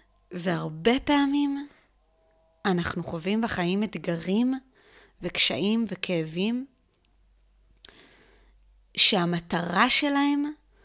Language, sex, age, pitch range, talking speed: Hebrew, female, 20-39, 175-230 Hz, 55 wpm